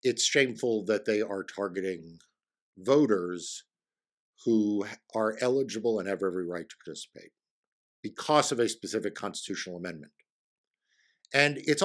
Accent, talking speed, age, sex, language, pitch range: American, 120 wpm, 50-69, male, English, 95-120 Hz